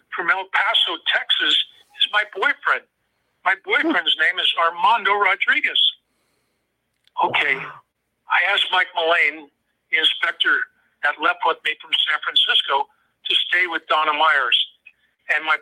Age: 50-69